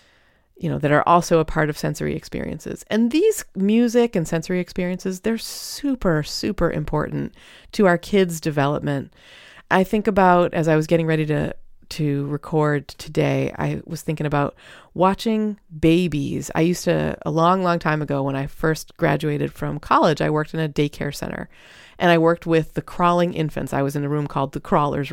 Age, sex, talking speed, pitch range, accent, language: 30-49, female, 185 wpm, 145-175 Hz, American, English